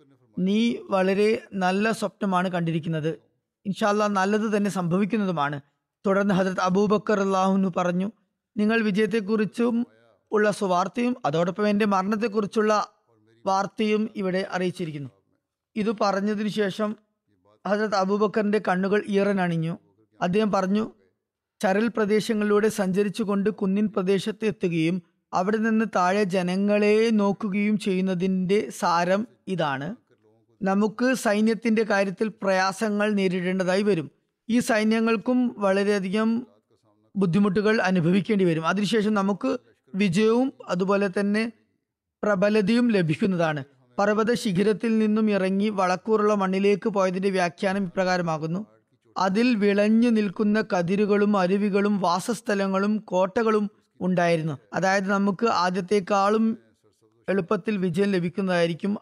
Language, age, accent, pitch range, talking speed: Malayalam, 20-39, native, 185-215 Hz, 90 wpm